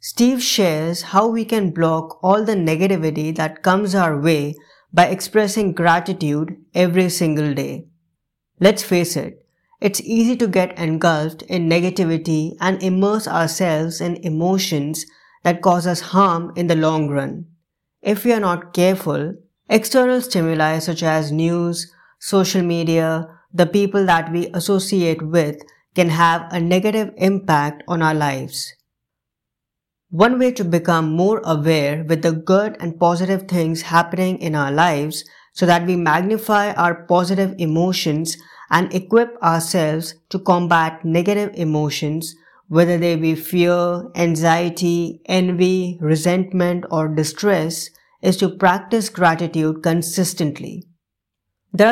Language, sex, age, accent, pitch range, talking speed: English, female, 20-39, Indian, 160-190 Hz, 130 wpm